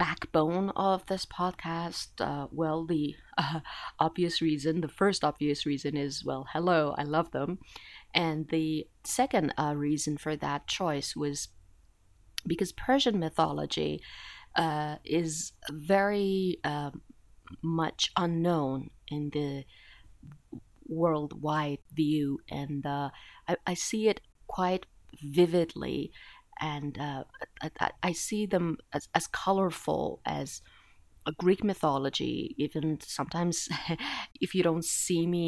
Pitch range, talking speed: 145-180 Hz, 120 wpm